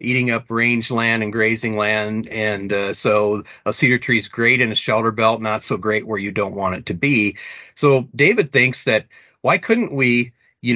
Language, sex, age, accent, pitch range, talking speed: English, male, 40-59, American, 105-130 Hz, 200 wpm